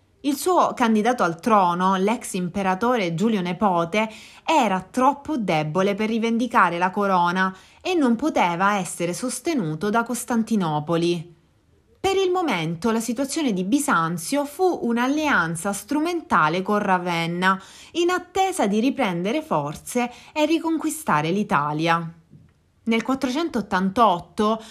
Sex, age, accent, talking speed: female, 30-49, native, 110 wpm